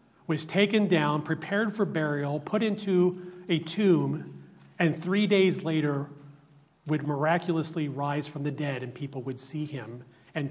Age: 40-59